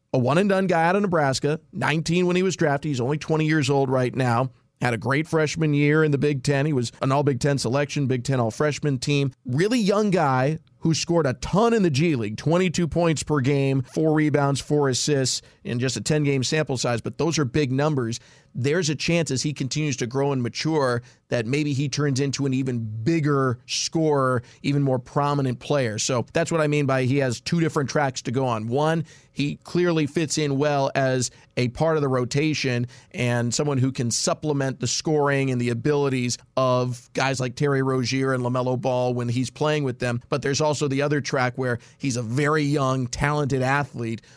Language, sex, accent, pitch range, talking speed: English, male, American, 125-150 Hz, 205 wpm